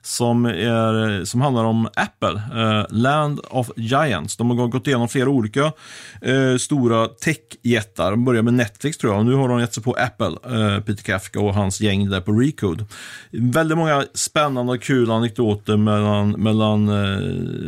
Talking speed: 155 wpm